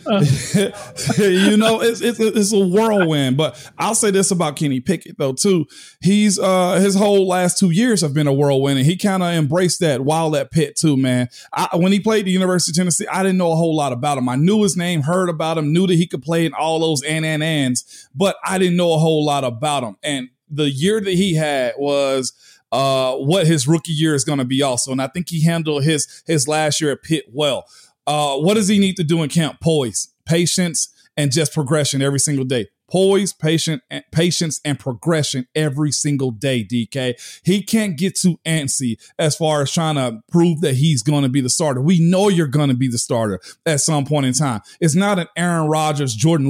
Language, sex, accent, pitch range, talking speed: English, male, American, 140-180 Hz, 225 wpm